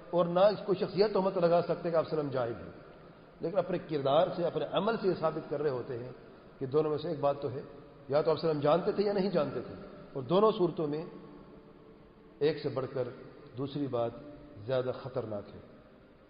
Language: English